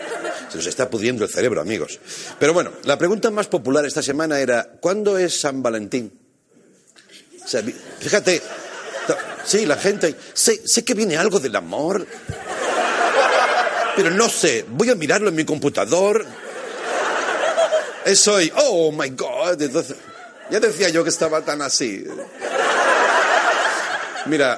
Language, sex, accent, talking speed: Spanish, male, Spanish, 135 wpm